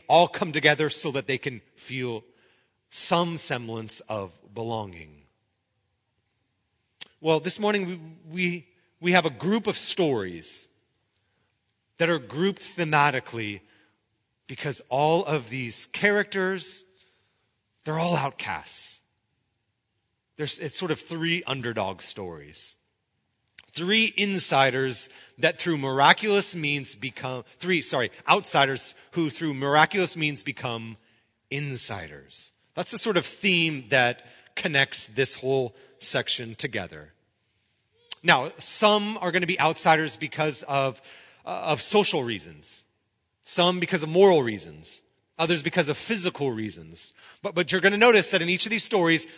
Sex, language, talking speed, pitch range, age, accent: male, English, 125 wpm, 115-170 Hz, 30-49, American